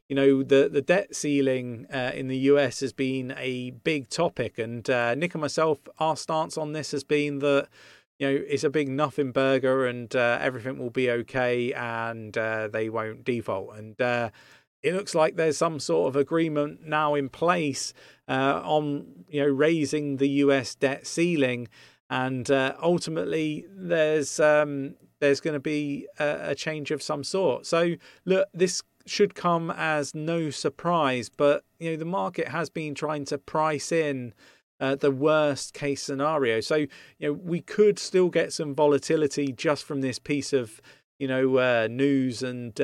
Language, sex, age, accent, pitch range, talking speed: English, male, 40-59, British, 130-155 Hz, 175 wpm